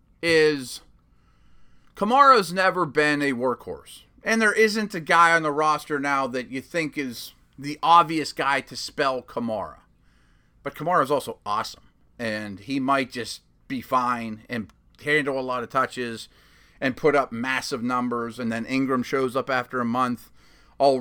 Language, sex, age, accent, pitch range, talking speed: English, male, 30-49, American, 115-155 Hz, 155 wpm